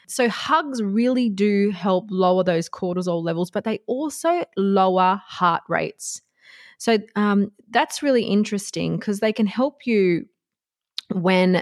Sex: female